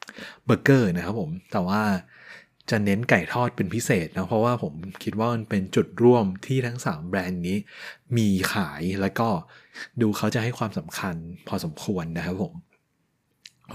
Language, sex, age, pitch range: Thai, male, 20-39, 105-130 Hz